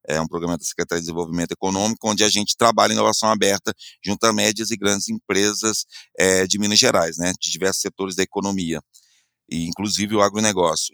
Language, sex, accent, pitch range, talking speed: Portuguese, male, Brazilian, 95-120 Hz, 180 wpm